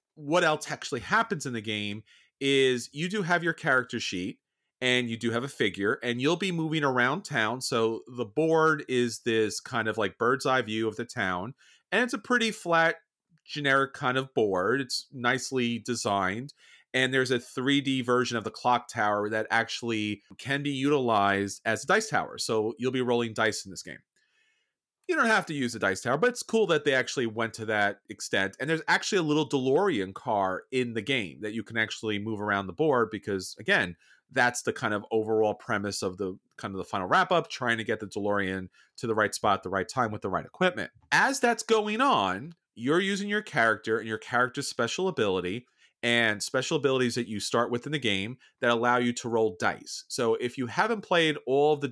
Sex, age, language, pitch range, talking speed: male, 30-49, English, 110-150 Hz, 210 wpm